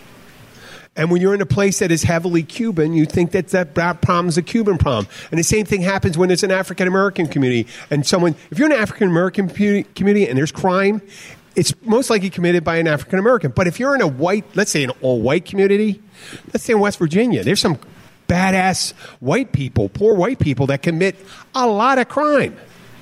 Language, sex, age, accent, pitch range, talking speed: English, male, 50-69, American, 140-195 Hz, 200 wpm